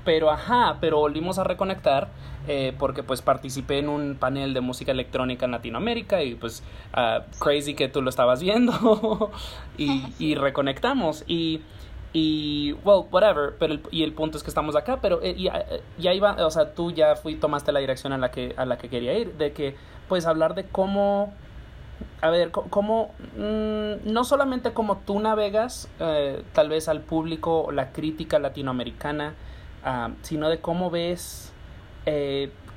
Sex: male